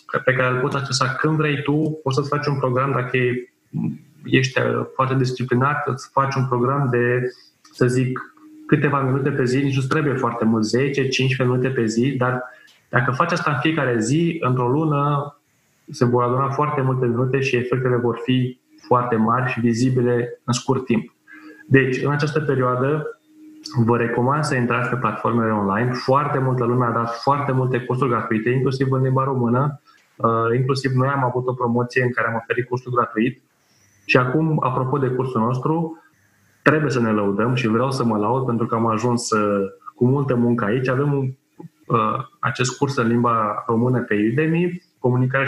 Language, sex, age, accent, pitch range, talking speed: Romanian, male, 20-39, native, 120-140 Hz, 180 wpm